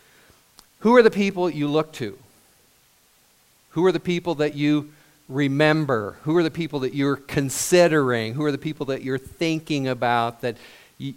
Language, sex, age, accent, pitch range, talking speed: English, male, 50-69, American, 115-155 Hz, 165 wpm